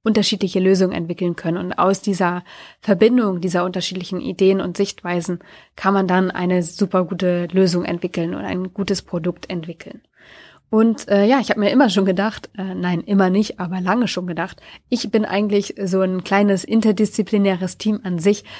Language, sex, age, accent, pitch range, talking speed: German, female, 30-49, German, 180-200 Hz, 170 wpm